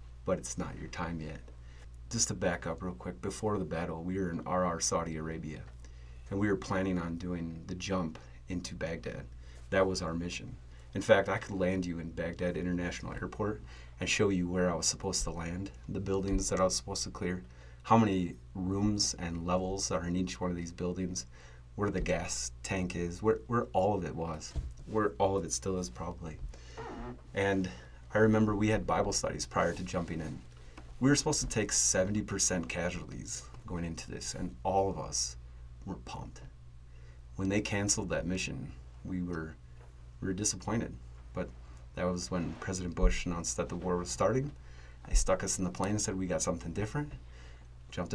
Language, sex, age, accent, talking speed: English, male, 30-49, American, 190 wpm